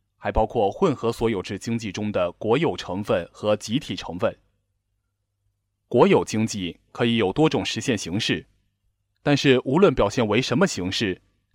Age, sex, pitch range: 20-39, male, 100-125 Hz